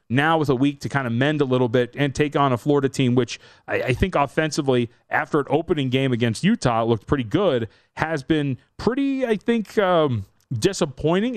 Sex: male